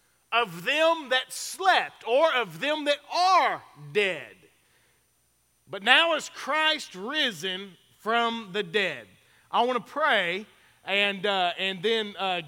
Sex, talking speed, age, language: male, 130 wpm, 40-59, English